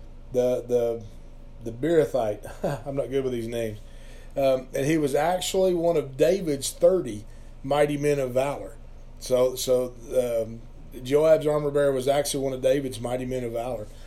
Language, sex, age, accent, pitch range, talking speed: English, male, 40-59, American, 125-150 Hz, 160 wpm